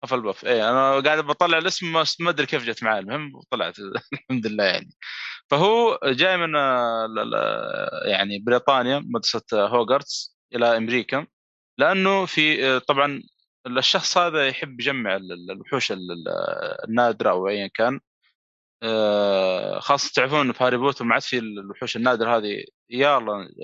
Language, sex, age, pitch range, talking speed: Arabic, male, 20-39, 105-135 Hz, 125 wpm